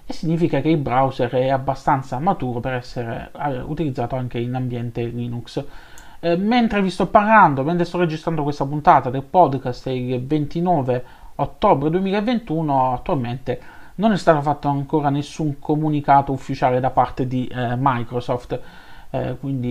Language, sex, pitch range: Italian, male, 125-165 Hz